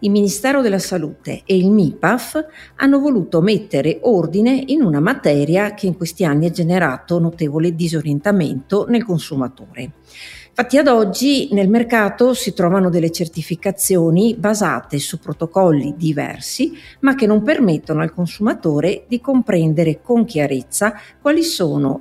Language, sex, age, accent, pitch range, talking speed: Italian, female, 50-69, native, 155-235 Hz, 135 wpm